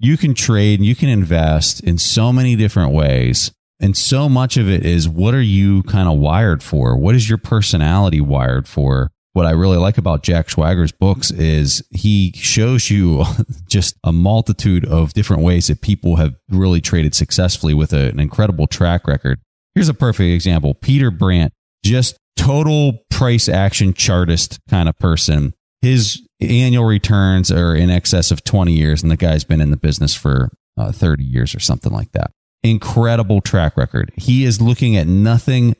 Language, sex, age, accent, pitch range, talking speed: English, male, 30-49, American, 80-115 Hz, 180 wpm